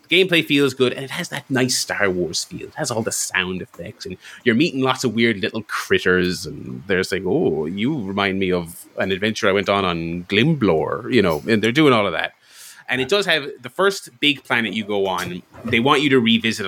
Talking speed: 230 wpm